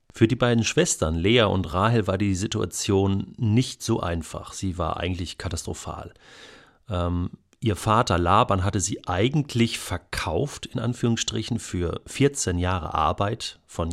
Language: German